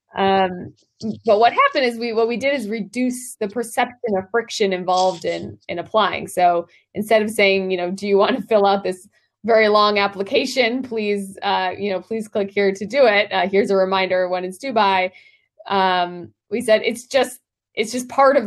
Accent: American